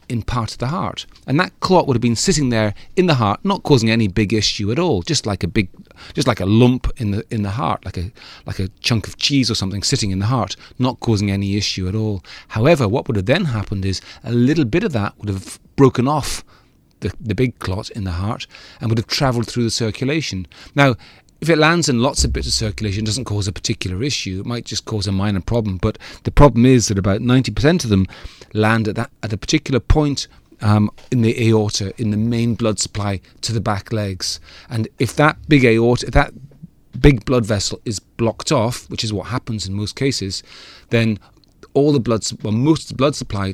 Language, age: English, 30-49